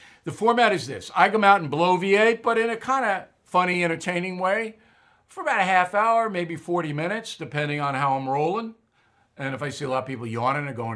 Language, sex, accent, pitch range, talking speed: English, male, American, 125-180 Hz, 230 wpm